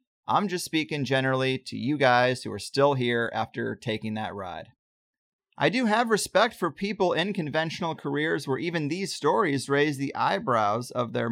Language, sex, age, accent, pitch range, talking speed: English, male, 30-49, American, 130-180 Hz, 175 wpm